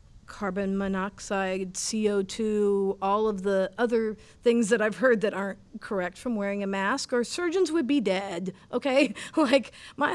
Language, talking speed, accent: English, 155 wpm, American